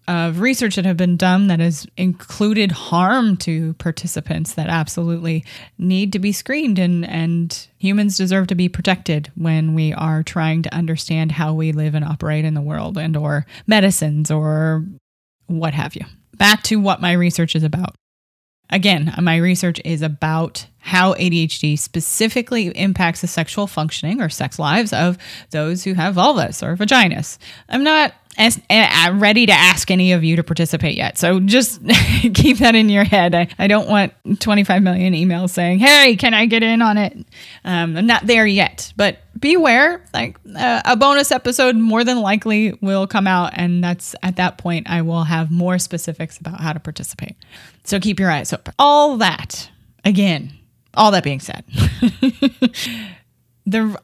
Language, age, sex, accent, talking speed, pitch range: English, 20-39, female, American, 170 wpm, 160-205 Hz